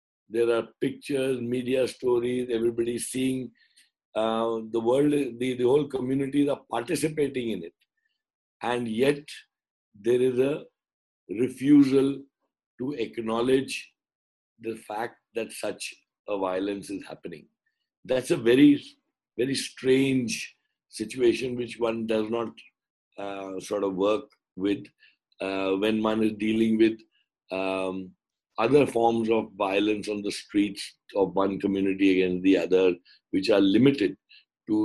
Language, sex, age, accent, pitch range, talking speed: English, male, 60-79, Indian, 105-135 Hz, 125 wpm